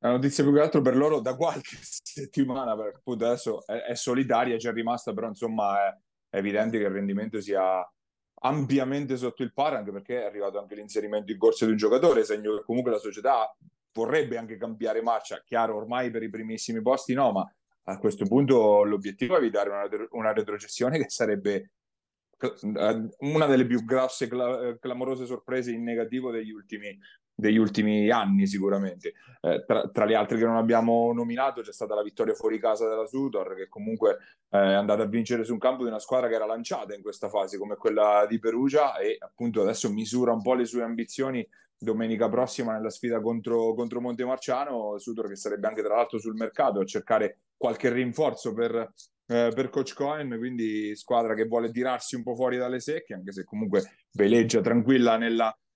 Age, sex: 30-49, male